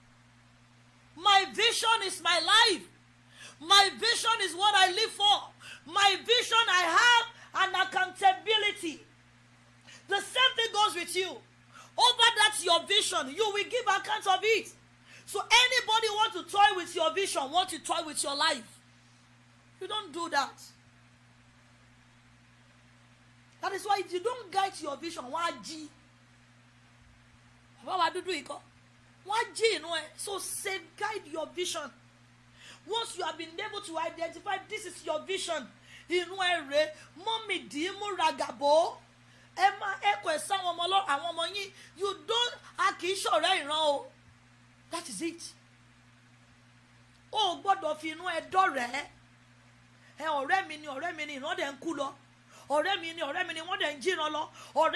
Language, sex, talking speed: English, female, 135 wpm